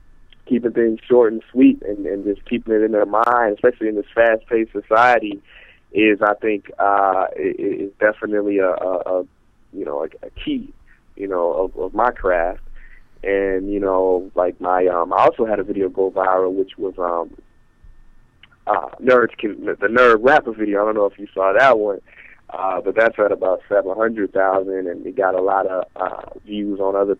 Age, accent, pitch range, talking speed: 20-39, American, 95-125 Hz, 185 wpm